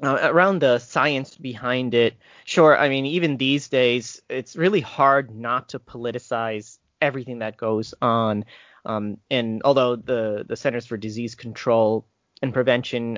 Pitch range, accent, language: 105-130 Hz, American, English